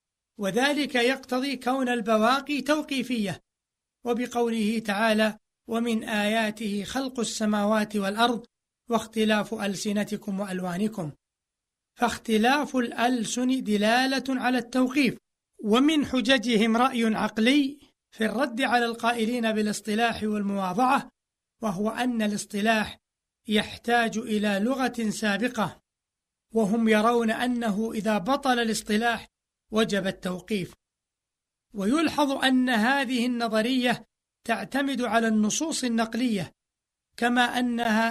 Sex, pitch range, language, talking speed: male, 215-250 Hz, Arabic, 85 wpm